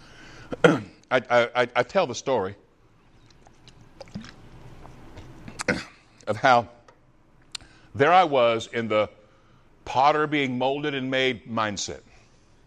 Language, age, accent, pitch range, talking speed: English, 60-79, American, 115-135 Hz, 70 wpm